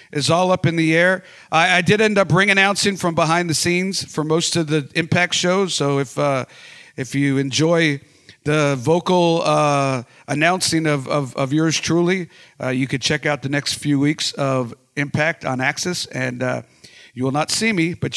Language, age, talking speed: English, 50-69, 195 wpm